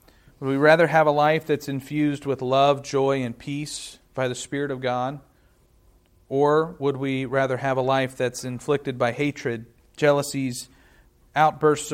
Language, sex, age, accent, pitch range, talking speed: English, male, 40-59, American, 120-140 Hz, 155 wpm